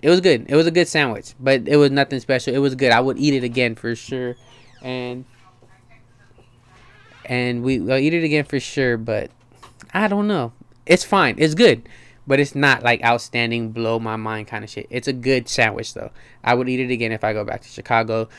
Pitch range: 120-140 Hz